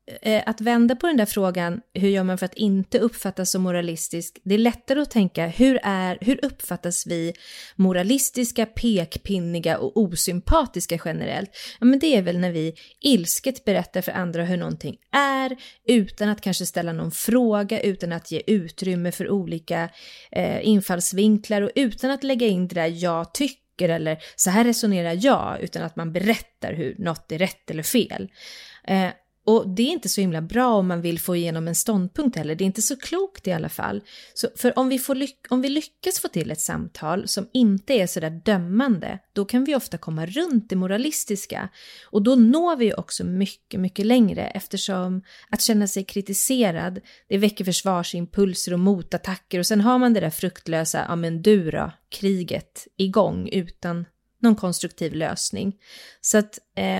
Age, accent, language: 30-49, native, Swedish